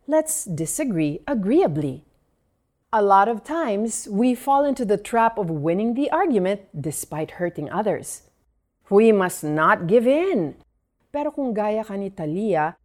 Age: 40-59